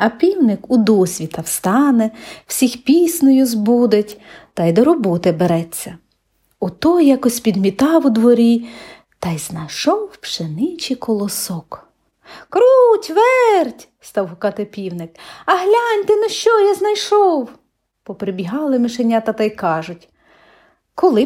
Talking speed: 120 wpm